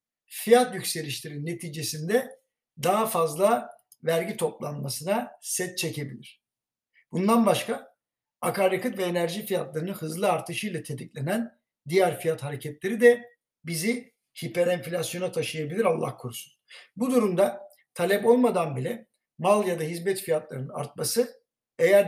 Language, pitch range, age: Turkish, 160-220 Hz, 60-79